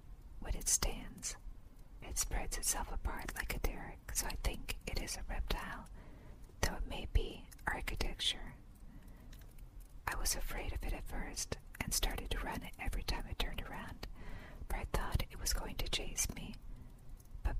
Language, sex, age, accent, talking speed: English, female, 50-69, American, 165 wpm